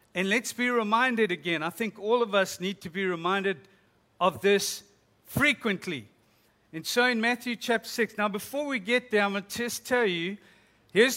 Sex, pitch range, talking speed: male, 180-245 Hz, 190 wpm